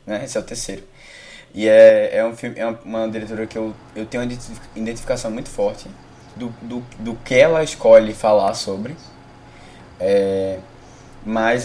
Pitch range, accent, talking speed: 110-135 Hz, Brazilian, 160 wpm